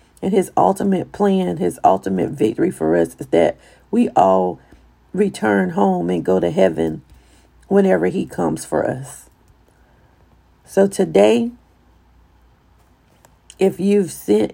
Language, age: English, 40-59